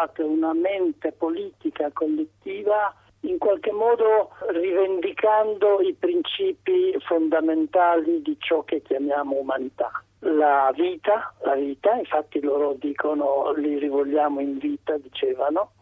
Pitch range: 150-215 Hz